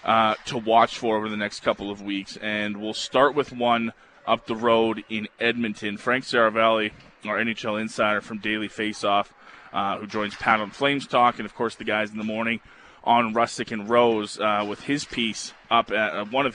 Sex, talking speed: male, 200 wpm